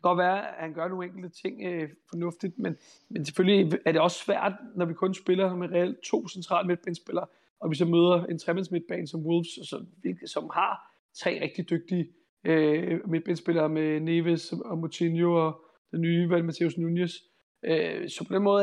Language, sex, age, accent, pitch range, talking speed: Danish, male, 30-49, native, 165-190 Hz, 195 wpm